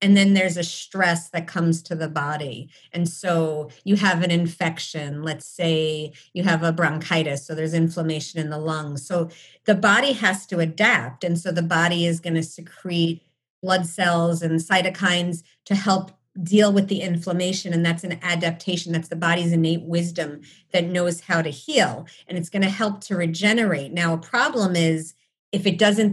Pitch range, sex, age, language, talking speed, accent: 165-190 Hz, female, 40-59, English, 185 wpm, American